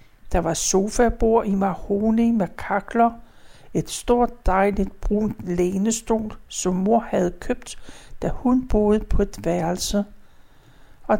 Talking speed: 125 wpm